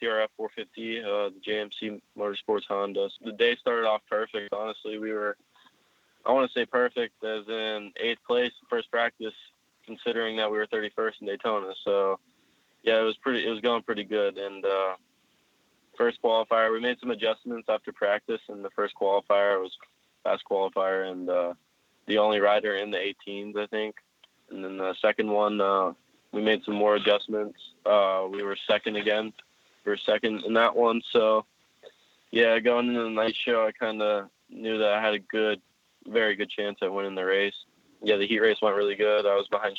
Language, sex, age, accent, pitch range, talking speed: English, male, 20-39, American, 100-110 Hz, 190 wpm